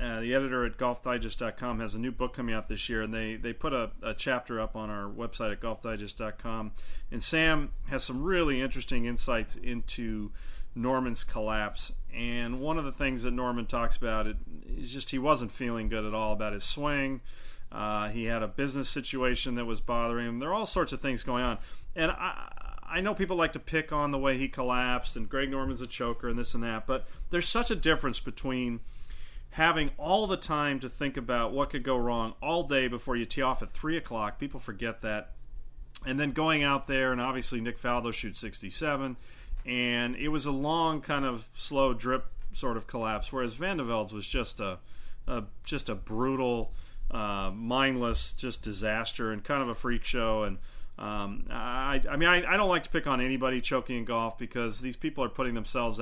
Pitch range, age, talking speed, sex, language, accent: 110-135 Hz, 40-59, 205 wpm, male, English, American